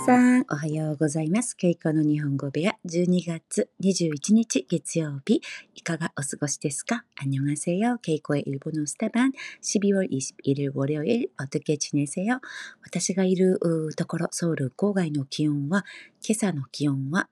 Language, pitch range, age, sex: Korean, 145-205 Hz, 40-59, female